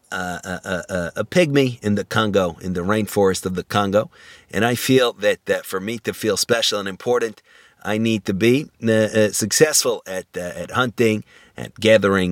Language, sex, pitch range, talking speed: English, male, 95-115 Hz, 195 wpm